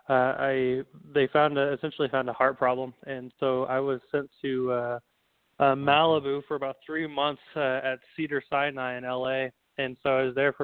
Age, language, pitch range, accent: 20-39, English, 125-140 Hz, American